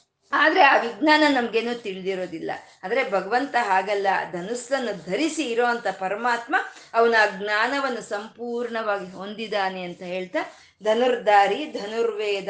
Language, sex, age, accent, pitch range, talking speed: Kannada, female, 20-39, native, 200-275 Hz, 105 wpm